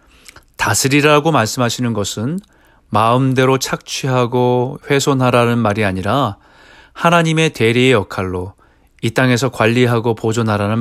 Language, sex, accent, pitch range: Korean, male, native, 105-140 Hz